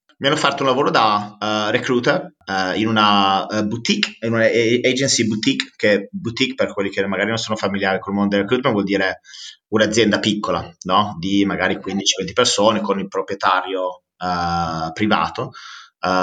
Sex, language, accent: male, Italian, native